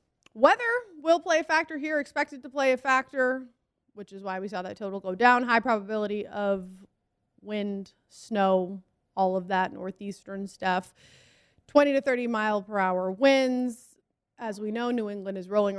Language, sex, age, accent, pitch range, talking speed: English, female, 20-39, American, 195-265 Hz, 165 wpm